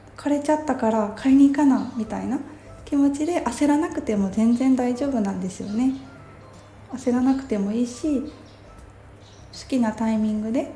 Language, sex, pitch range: Japanese, female, 160-255 Hz